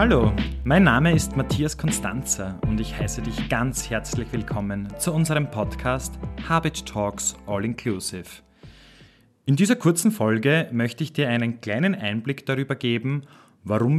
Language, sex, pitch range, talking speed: German, male, 105-140 Hz, 140 wpm